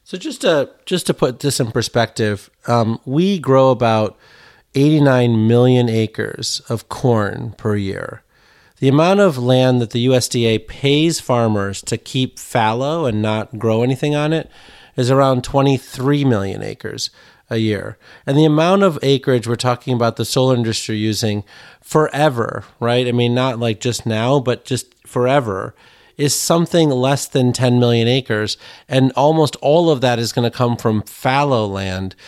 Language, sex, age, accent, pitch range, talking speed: English, male, 40-59, American, 110-135 Hz, 160 wpm